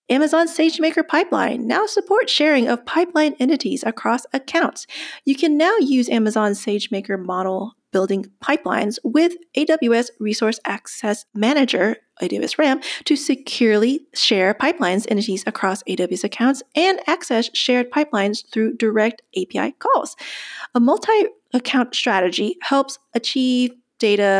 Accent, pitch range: American, 205-285 Hz